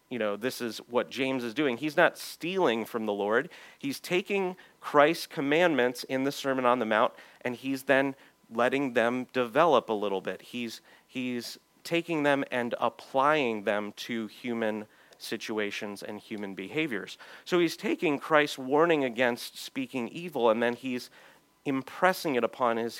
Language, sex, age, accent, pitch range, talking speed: English, male, 40-59, American, 115-145 Hz, 160 wpm